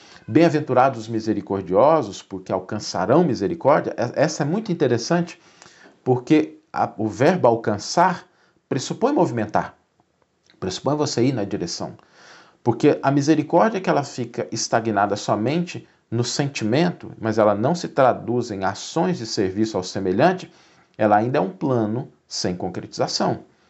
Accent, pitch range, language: Brazilian, 110-165 Hz, Portuguese